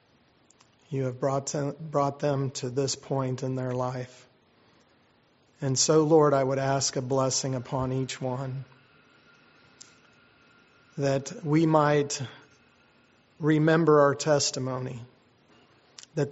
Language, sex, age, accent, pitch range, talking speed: English, male, 40-59, American, 130-145 Hz, 105 wpm